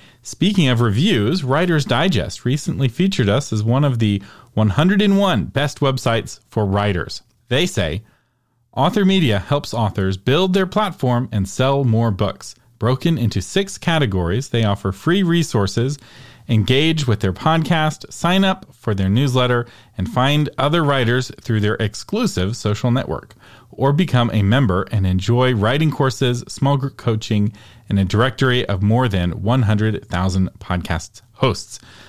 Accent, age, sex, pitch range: American, 40-59, male, 110-145 Hz